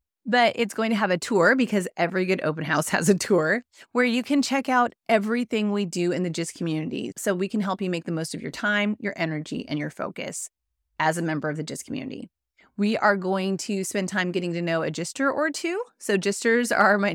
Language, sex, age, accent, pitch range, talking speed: English, female, 30-49, American, 175-235 Hz, 235 wpm